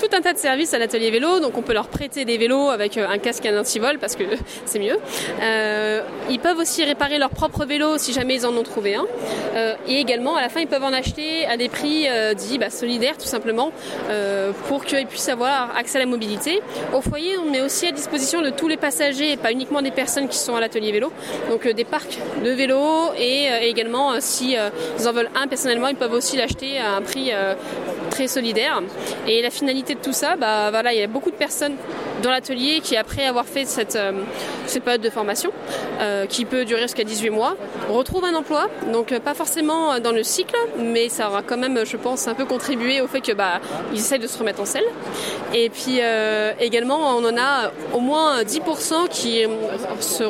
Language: French